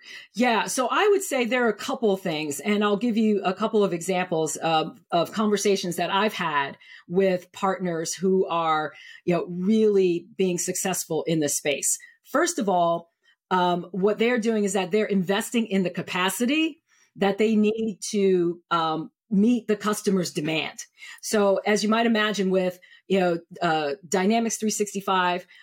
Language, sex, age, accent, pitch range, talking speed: English, female, 40-59, American, 175-215 Hz, 170 wpm